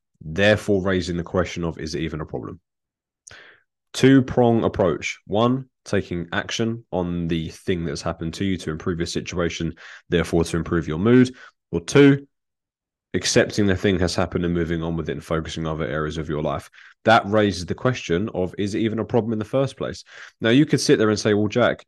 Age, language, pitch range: 20-39, English, 85-110 Hz